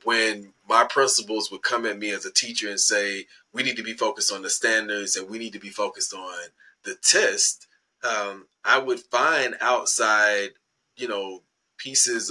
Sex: male